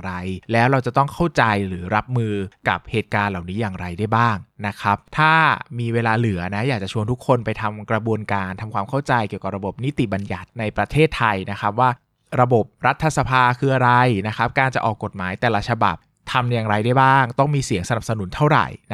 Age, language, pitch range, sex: 20-39, Thai, 105-130 Hz, male